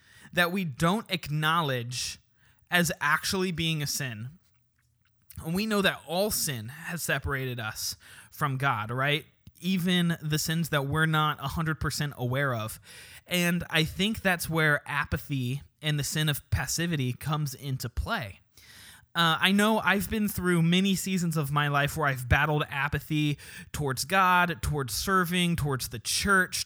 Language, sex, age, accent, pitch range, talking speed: English, male, 20-39, American, 135-175 Hz, 150 wpm